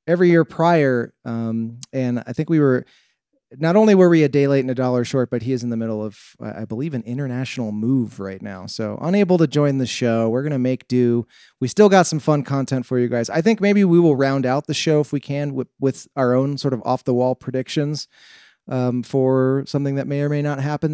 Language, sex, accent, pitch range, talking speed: English, male, American, 120-145 Hz, 240 wpm